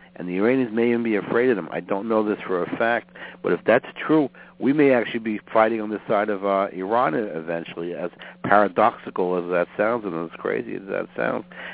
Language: English